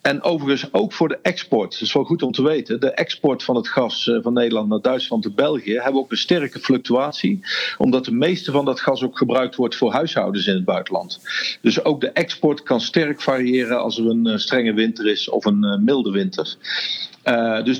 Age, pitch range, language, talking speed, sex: 50-69, 115-150 Hz, Dutch, 210 wpm, male